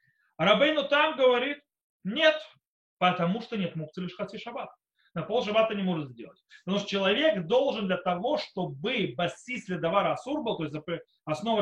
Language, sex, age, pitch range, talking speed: Russian, male, 30-49, 180-270 Hz, 165 wpm